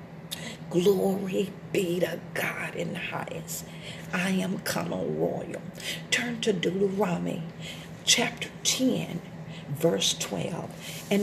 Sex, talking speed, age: female, 100 wpm, 50-69